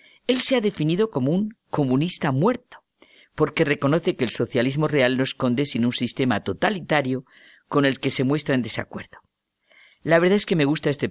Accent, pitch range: Spanish, 120-155 Hz